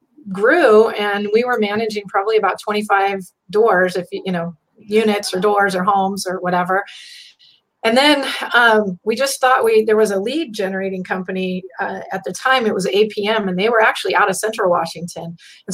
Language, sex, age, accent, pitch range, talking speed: English, female, 30-49, American, 185-215 Hz, 185 wpm